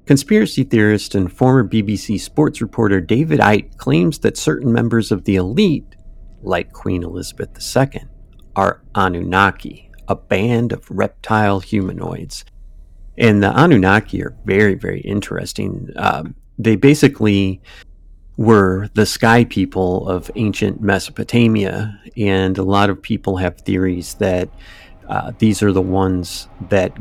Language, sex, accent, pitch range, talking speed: English, male, American, 90-105 Hz, 130 wpm